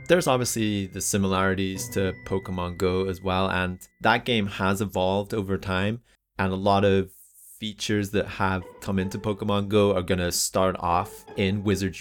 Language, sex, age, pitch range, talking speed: English, male, 30-49, 90-110 Hz, 170 wpm